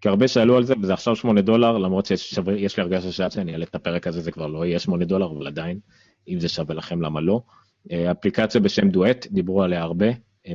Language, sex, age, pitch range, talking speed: Hebrew, male, 30-49, 85-105 Hz, 230 wpm